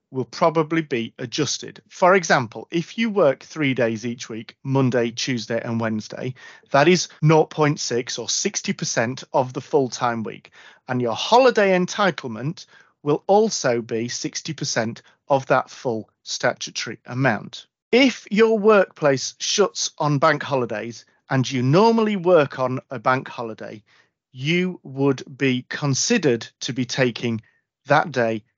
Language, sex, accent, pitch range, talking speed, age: English, male, British, 125-175 Hz, 130 wpm, 40-59